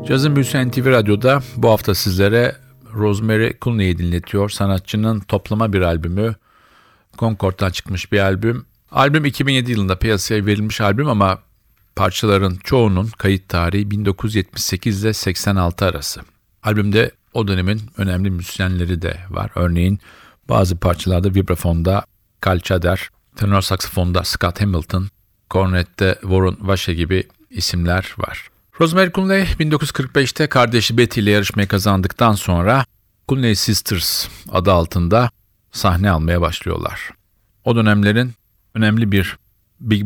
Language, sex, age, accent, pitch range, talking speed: Turkish, male, 50-69, native, 90-110 Hz, 115 wpm